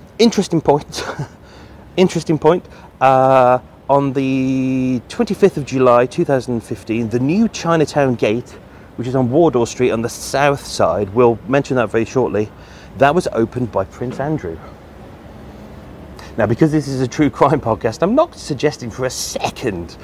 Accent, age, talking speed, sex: British, 30-49, 145 wpm, male